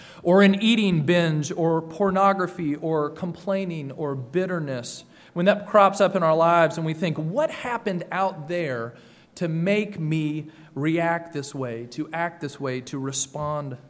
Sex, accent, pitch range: male, American, 140-185 Hz